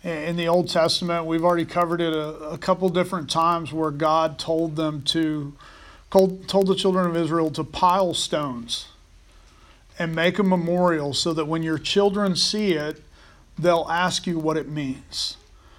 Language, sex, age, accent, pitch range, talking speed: English, male, 40-59, American, 140-175 Hz, 165 wpm